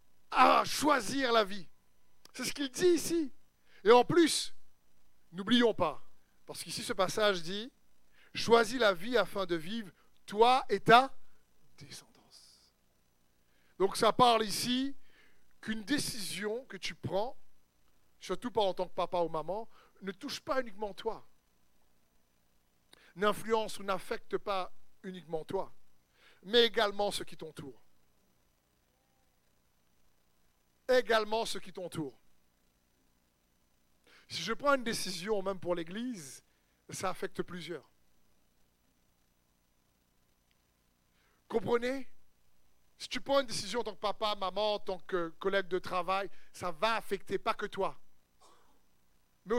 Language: French